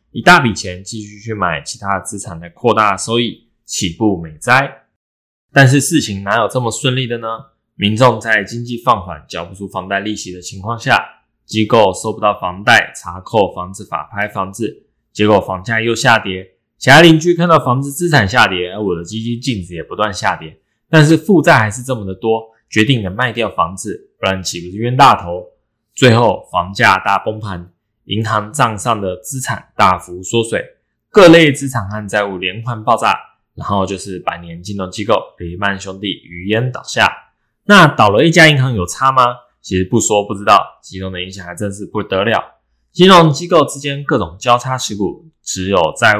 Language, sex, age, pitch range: Chinese, male, 20-39, 95-125 Hz